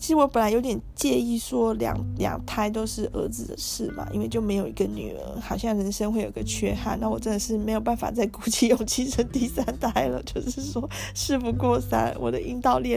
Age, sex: 20-39, female